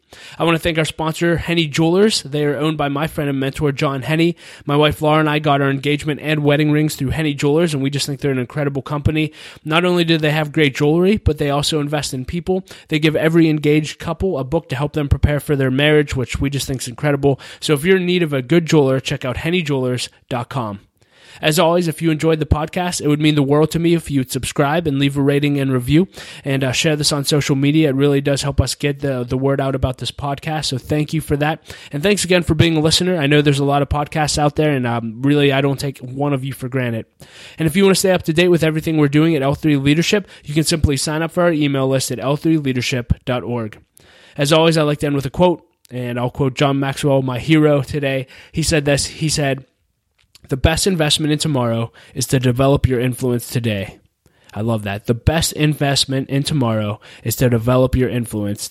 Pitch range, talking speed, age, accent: 130-155 Hz, 240 wpm, 20-39, American